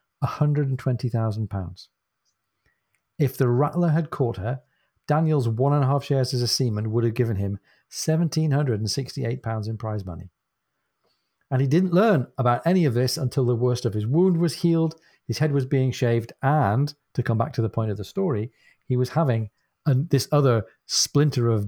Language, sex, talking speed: English, male, 170 wpm